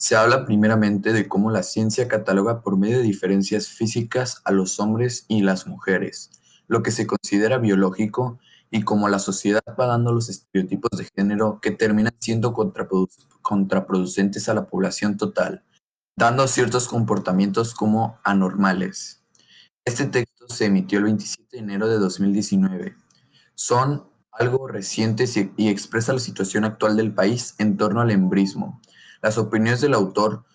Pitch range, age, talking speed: 100-120 Hz, 20-39, 145 wpm